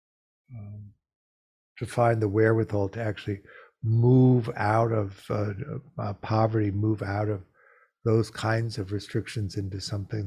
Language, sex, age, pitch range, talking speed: English, male, 50-69, 100-120 Hz, 130 wpm